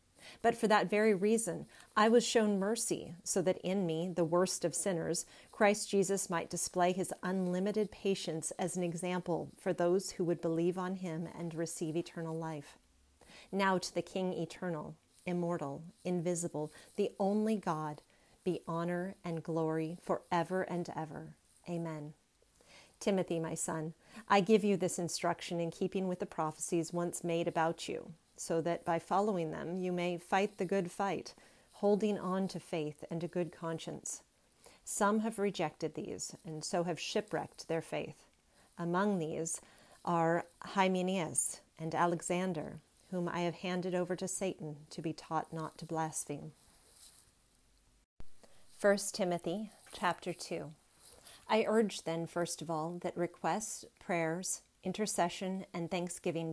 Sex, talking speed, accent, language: female, 145 wpm, American, English